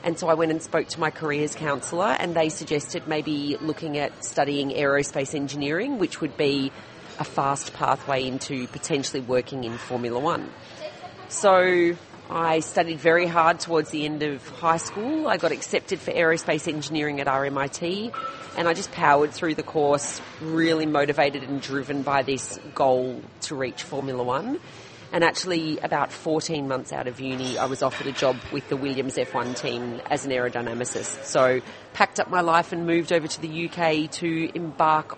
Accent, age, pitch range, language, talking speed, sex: Australian, 30-49, 140-170 Hz, English, 175 wpm, female